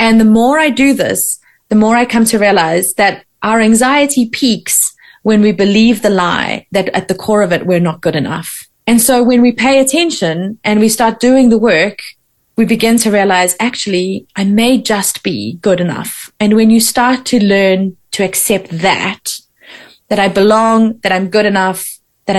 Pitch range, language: 180-225 Hz, English